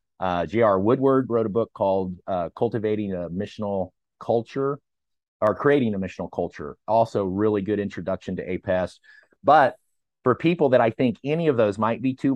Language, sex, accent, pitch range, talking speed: English, male, American, 95-115 Hz, 170 wpm